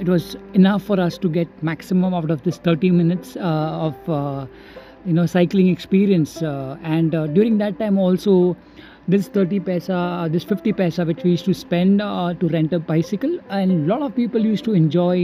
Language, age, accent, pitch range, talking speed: English, 50-69, Indian, 170-195 Hz, 200 wpm